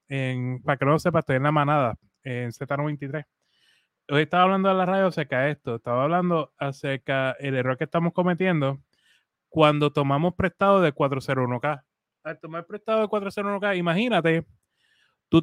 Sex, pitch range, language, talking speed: male, 150-200 Hz, Spanish, 155 wpm